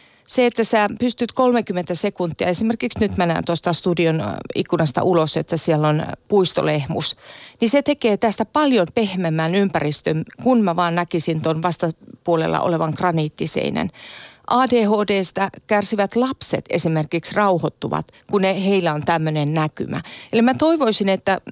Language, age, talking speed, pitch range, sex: Finnish, 40-59, 130 wpm, 165-220 Hz, female